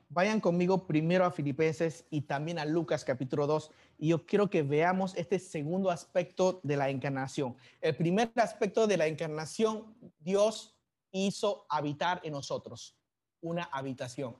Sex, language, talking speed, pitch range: male, Spanish, 145 wpm, 160-220 Hz